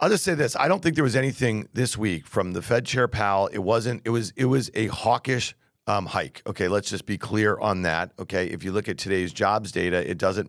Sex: male